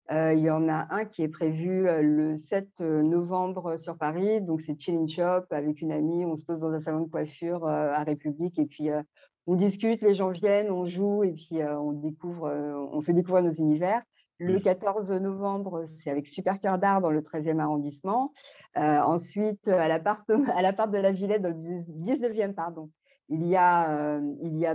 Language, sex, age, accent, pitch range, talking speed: French, female, 50-69, French, 155-190 Hz, 205 wpm